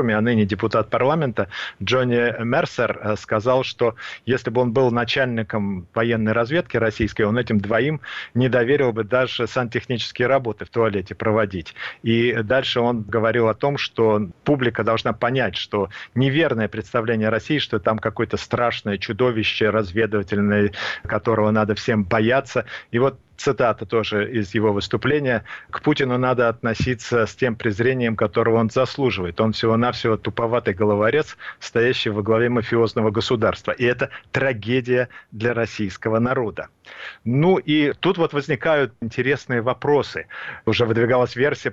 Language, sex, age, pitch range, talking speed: Russian, male, 40-59, 110-135 Hz, 135 wpm